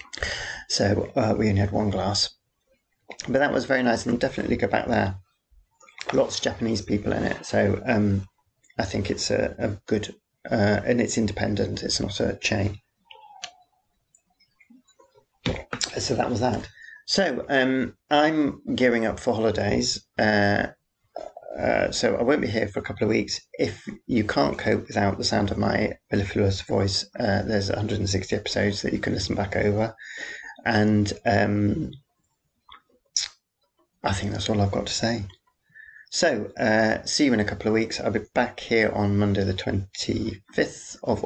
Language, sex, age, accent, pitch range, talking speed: English, male, 40-59, British, 100-110 Hz, 160 wpm